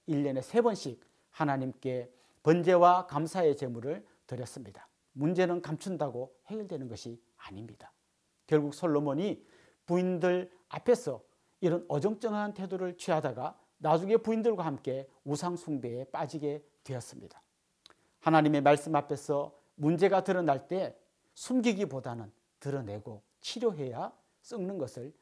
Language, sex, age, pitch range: Korean, male, 40-59, 135-190 Hz